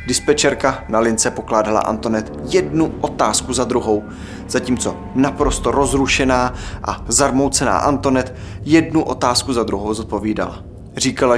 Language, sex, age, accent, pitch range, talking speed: Czech, male, 20-39, native, 100-135 Hz, 110 wpm